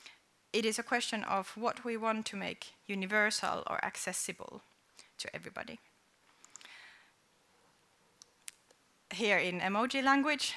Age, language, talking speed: 30-49, English, 110 wpm